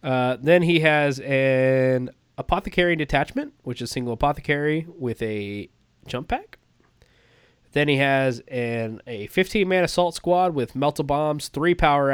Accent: American